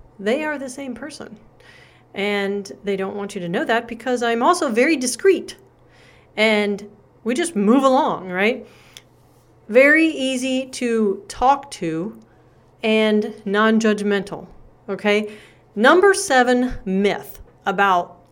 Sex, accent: female, American